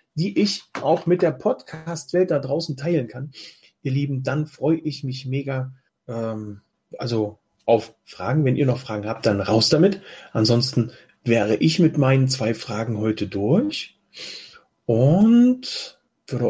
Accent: German